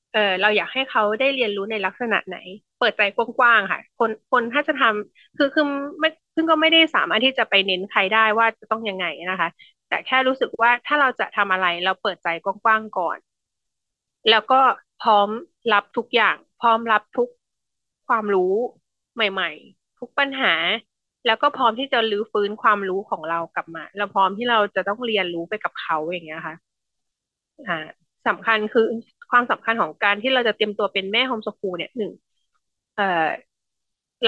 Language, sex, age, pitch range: Thai, female, 20-39, 195-250 Hz